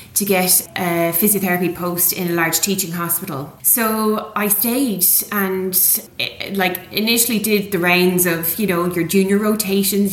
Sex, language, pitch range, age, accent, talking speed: female, English, 175-200 Hz, 20-39, Irish, 150 wpm